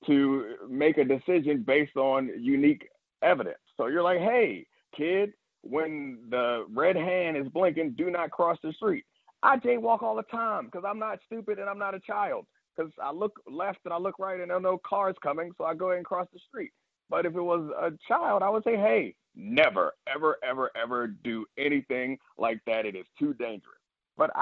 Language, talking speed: English, 205 wpm